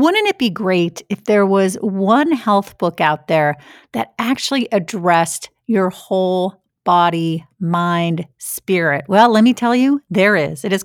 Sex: female